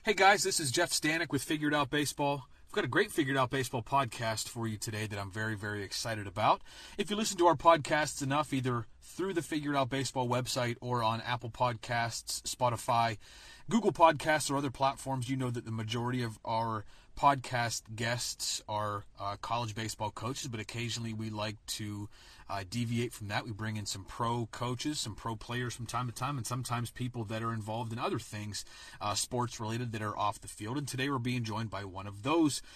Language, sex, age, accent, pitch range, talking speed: English, male, 30-49, American, 110-135 Hz, 205 wpm